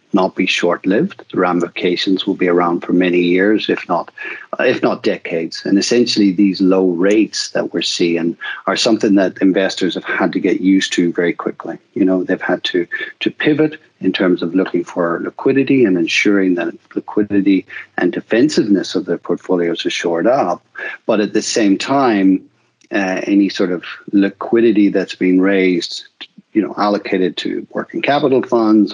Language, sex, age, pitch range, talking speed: English, male, 50-69, 90-115 Hz, 170 wpm